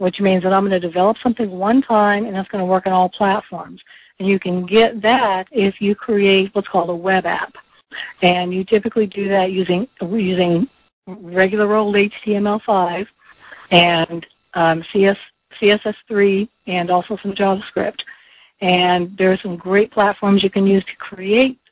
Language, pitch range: English, 180-215 Hz